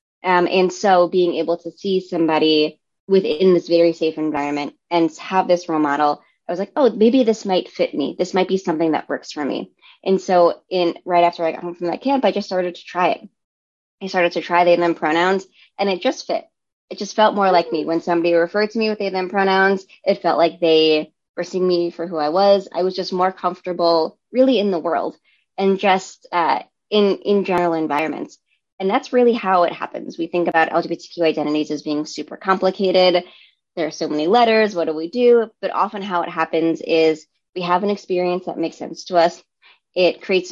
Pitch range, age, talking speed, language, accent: 165-195 Hz, 20-39, 220 wpm, English, American